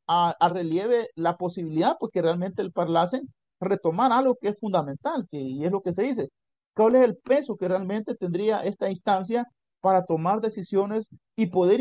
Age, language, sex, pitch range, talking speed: 50-69, Spanish, male, 165-200 Hz, 185 wpm